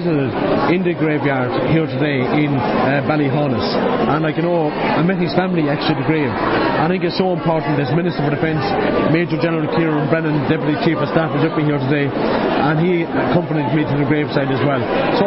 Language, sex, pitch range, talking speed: English, male, 145-170 Hz, 210 wpm